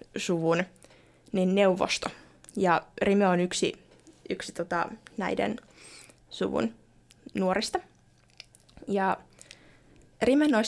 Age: 20-39